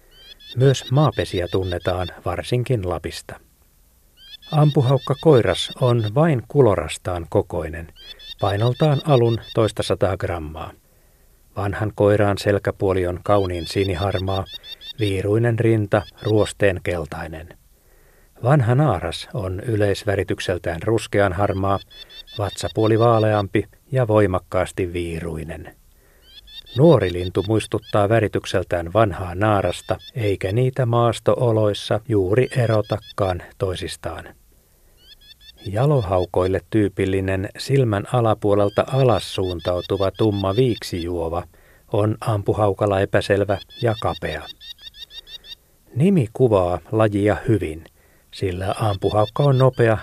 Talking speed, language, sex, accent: 85 wpm, Finnish, male, native